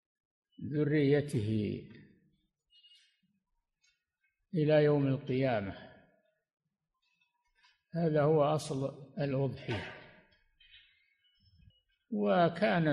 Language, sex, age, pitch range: Arabic, male, 60-79, 130-170 Hz